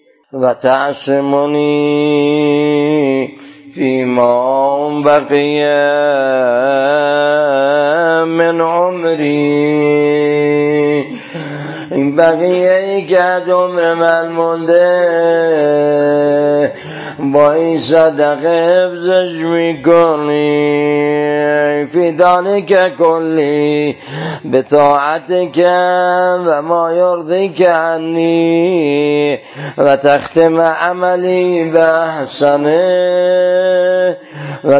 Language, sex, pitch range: Persian, male, 145-180 Hz